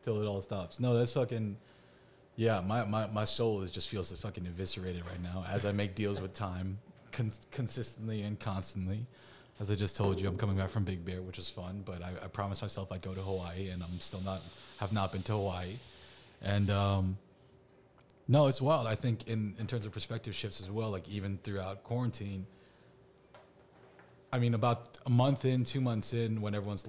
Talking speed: 205 wpm